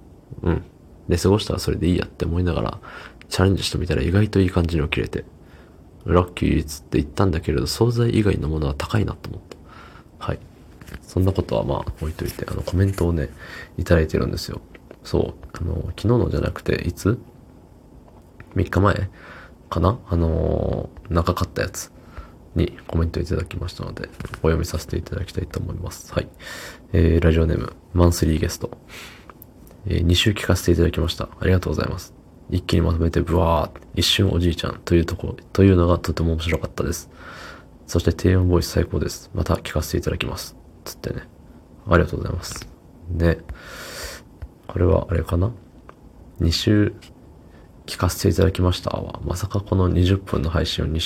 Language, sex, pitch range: Japanese, male, 80-95 Hz